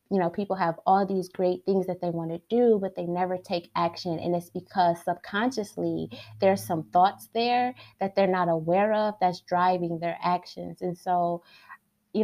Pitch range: 170-190 Hz